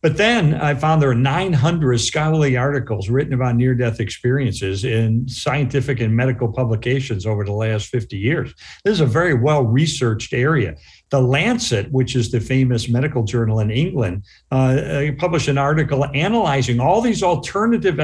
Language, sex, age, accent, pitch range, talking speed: English, male, 60-79, American, 120-160 Hz, 155 wpm